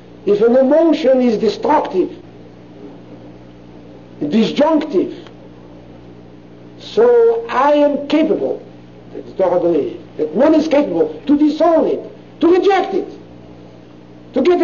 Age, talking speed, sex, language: 60-79, 95 wpm, male, English